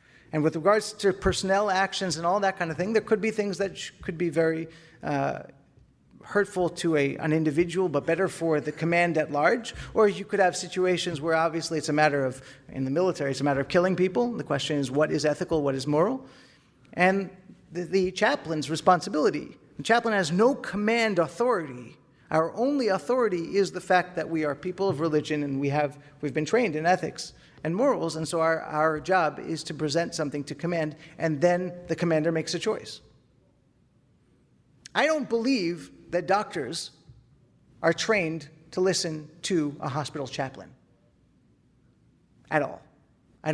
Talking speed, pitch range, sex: 180 wpm, 150-185 Hz, male